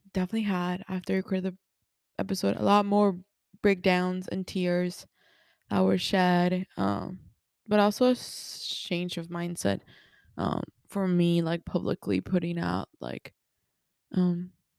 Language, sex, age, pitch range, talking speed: English, female, 20-39, 180-205 Hz, 120 wpm